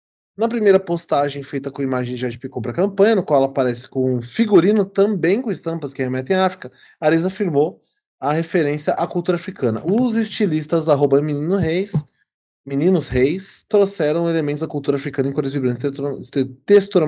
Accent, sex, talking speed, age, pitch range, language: Brazilian, male, 170 wpm, 20-39, 130-170 Hz, Portuguese